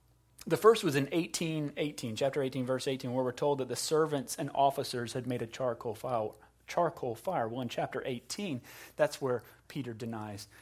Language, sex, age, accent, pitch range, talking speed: English, male, 30-49, American, 125-160 Hz, 175 wpm